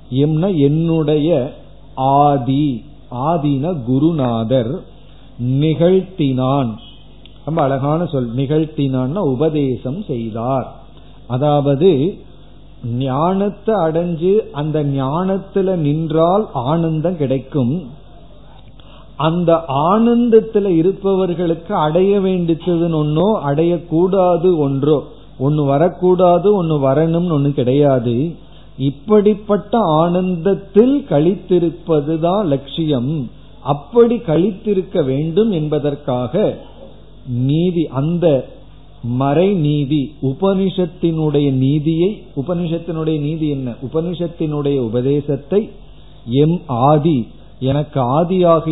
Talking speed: 65 wpm